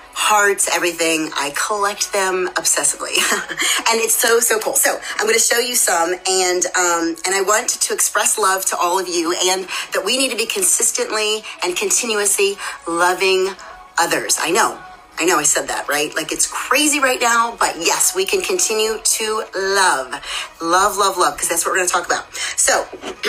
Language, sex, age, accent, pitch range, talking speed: English, female, 30-49, American, 180-260 Hz, 190 wpm